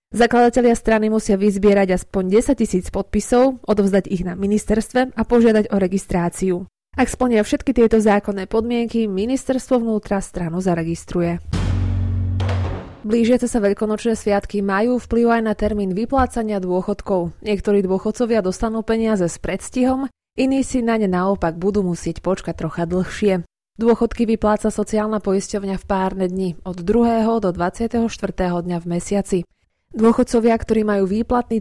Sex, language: female, Slovak